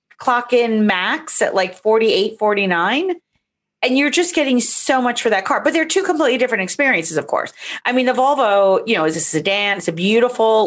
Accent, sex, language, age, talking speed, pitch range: American, female, English, 40-59, 195 wpm, 170-235 Hz